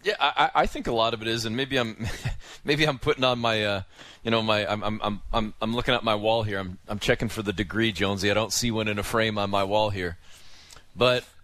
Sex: male